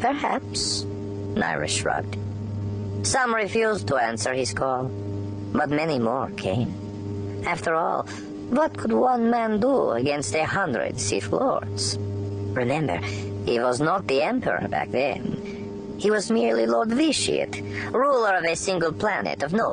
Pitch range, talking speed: 100-160 Hz, 135 wpm